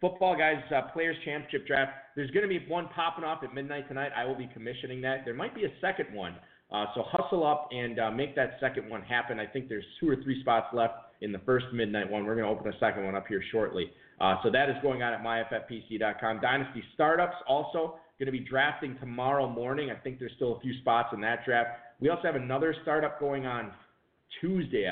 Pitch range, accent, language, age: 115-145 Hz, American, English, 40-59